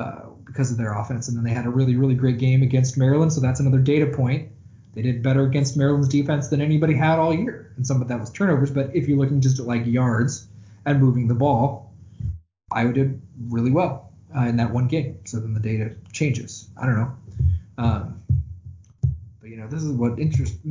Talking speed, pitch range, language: 215 wpm, 110-135 Hz, English